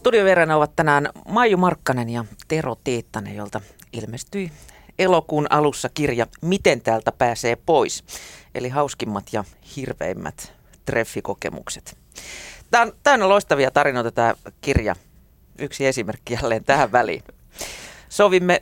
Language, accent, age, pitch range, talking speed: Finnish, native, 40-59, 115-170 Hz, 115 wpm